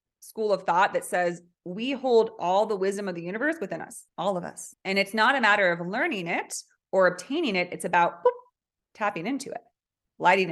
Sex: female